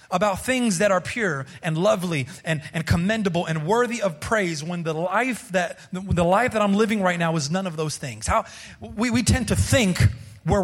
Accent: American